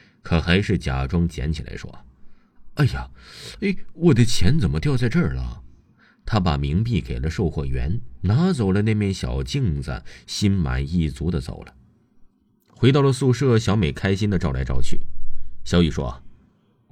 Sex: male